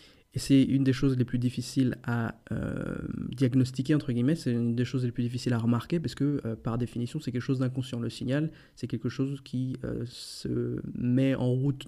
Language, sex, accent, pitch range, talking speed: French, male, French, 120-135 Hz, 210 wpm